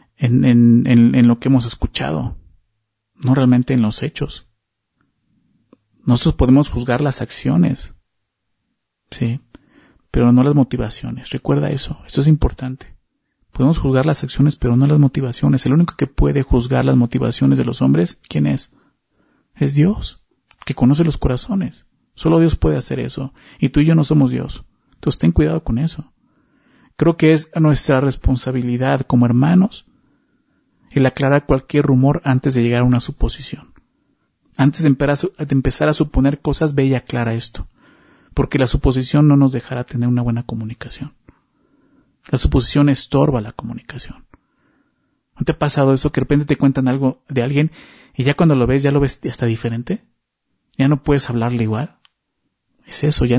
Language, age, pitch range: Spanish, 40-59, 120-145 Hz